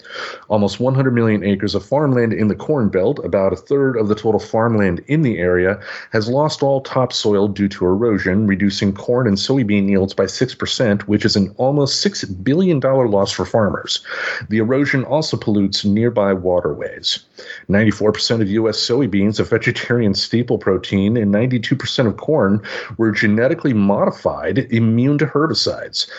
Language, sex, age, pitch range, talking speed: English, male, 40-59, 100-125 Hz, 155 wpm